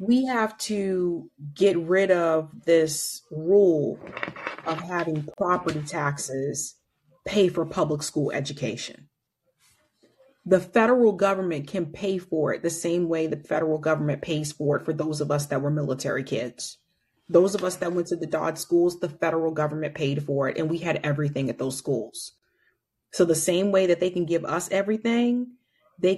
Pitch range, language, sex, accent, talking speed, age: 150-185 Hz, English, female, American, 170 wpm, 30-49